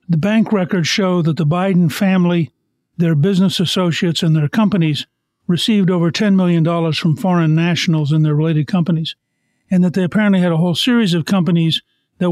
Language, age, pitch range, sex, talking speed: English, 60-79, 165-190 Hz, male, 175 wpm